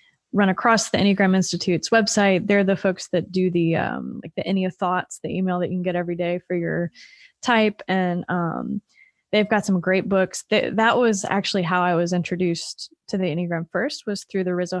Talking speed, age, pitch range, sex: 205 wpm, 20-39, 180-210 Hz, female